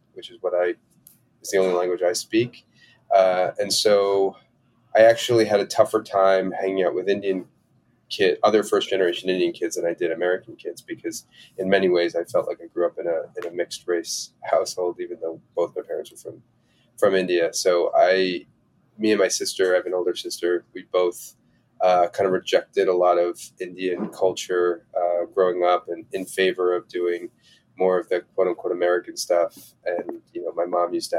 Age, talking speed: 30-49, 200 wpm